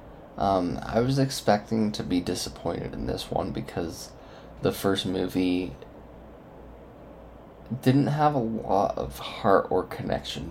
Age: 20-39